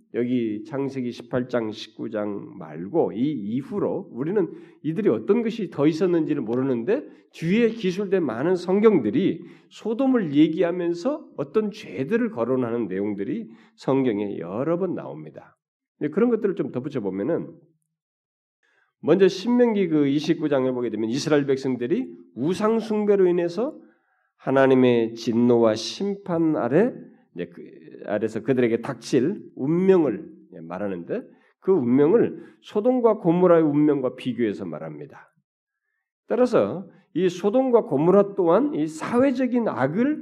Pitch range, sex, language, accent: 135-215 Hz, male, Korean, native